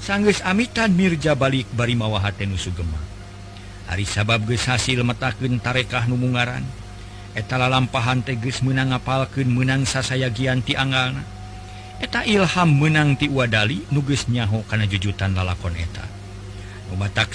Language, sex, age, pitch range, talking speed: Indonesian, male, 50-69, 100-130 Hz, 110 wpm